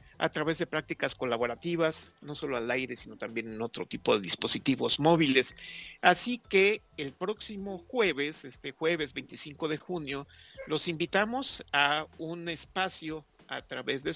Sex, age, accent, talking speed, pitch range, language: male, 50-69, Mexican, 150 wpm, 140-170 Hz, English